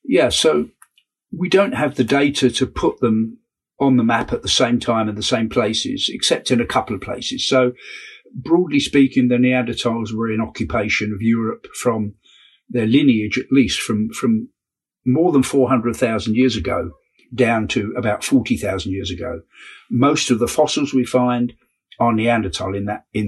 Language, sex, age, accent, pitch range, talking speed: English, male, 50-69, British, 115-135 Hz, 170 wpm